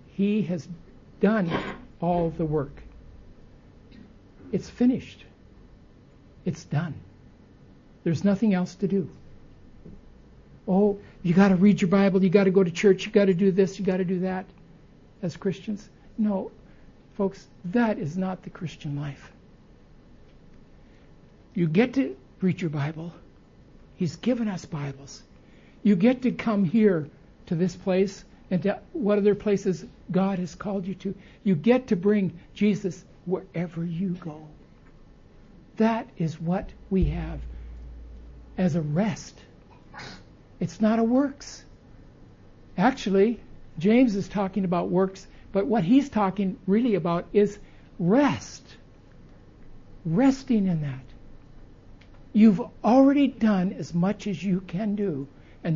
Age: 60-79